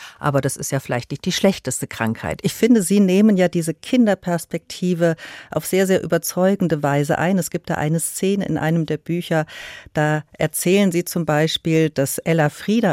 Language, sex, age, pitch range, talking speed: German, female, 50-69, 135-185 Hz, 180 wpm